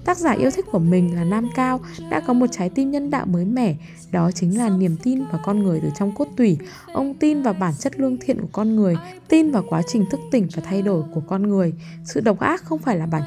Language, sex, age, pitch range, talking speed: Vietnamese, female, 10-29, 170-240 Hz, 265 wpm